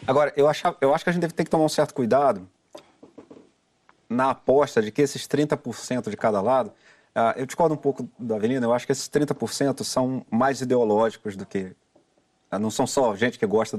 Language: Portuguese